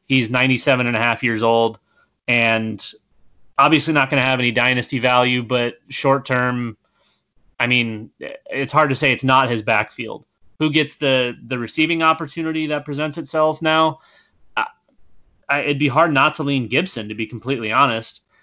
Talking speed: 165 wpm